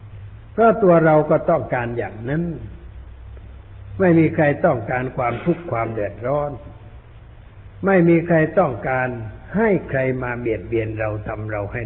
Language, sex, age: Thai, male, 60-79